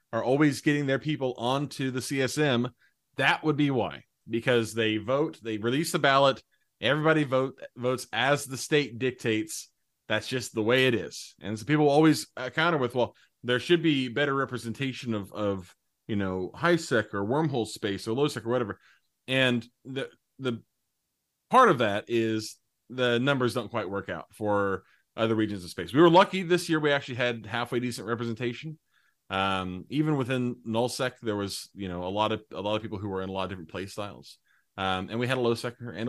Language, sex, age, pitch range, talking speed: English, male, 30-49, 105-130 Hz, 200 wpm